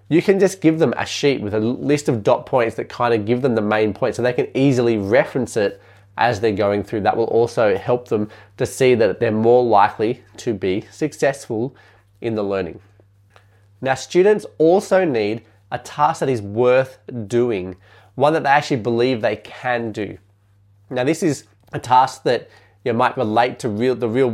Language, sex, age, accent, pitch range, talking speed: English, male, 20-39, Australian, 105-130 Hz, 195 wpm